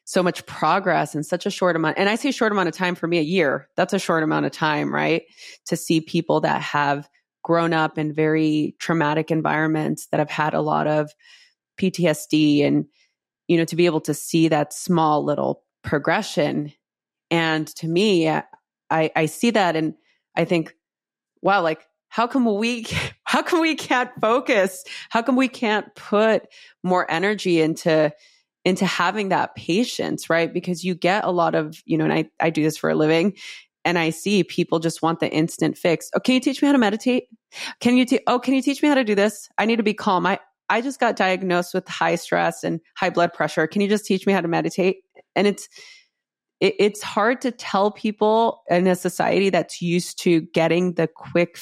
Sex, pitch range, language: female, 160-215 Hz, English